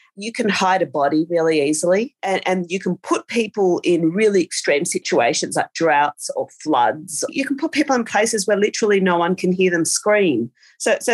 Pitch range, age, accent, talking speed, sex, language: 155-210 Hz, 40-59, Australian, 200 wpm, female, English